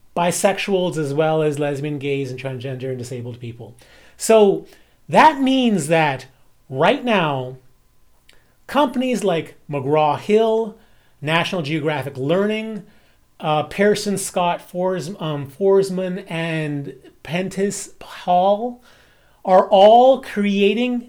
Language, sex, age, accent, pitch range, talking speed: English, male, 30-49, American, 150-205 Hz, 100 wpm